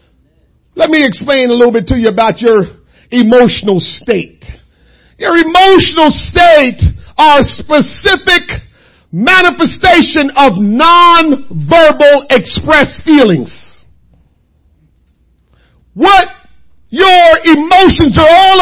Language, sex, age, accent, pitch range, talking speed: English, male, 50-69, American, 230-350 Hz, 85 wpm